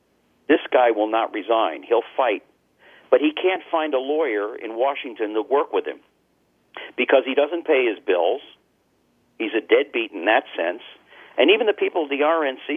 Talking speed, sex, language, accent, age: 180 wpm, male, English, American, 50-69